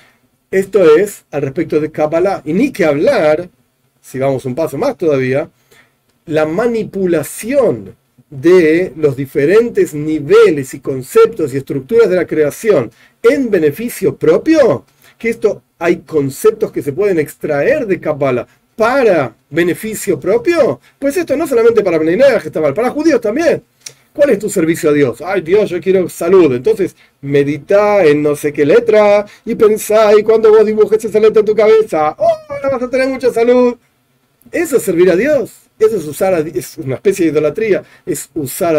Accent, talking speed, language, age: Argentinian, 165 wpm, Spanish, 40-59